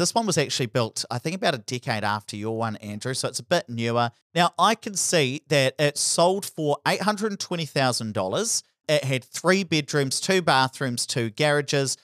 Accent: Australian